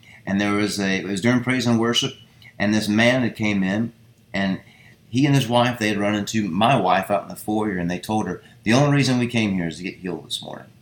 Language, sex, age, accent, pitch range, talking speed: English, male, 30-49, American, 95-115 Hz, 260 wpm